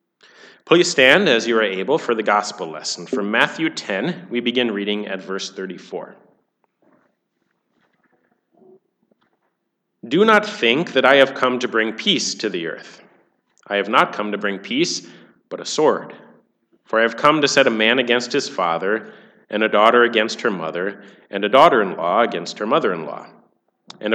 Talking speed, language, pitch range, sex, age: 165 wpm, English, 105-160 Hz, male, 30-49